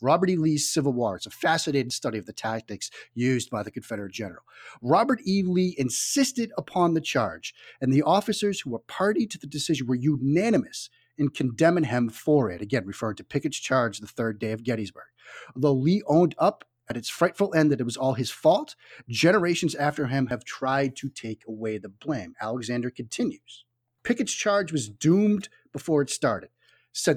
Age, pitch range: 30-49, 120-165 Hz